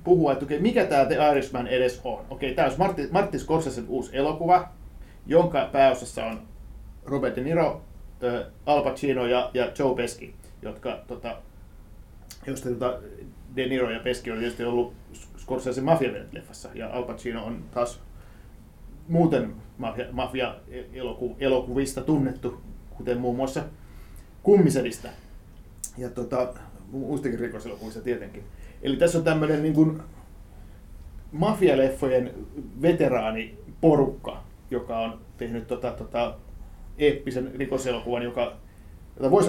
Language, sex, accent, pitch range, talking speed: Finnish, male, native, 115-135 Hz, 110 wpm